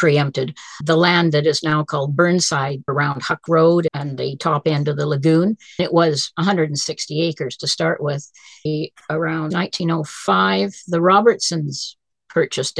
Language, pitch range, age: English, 150-175 Hz, 50-69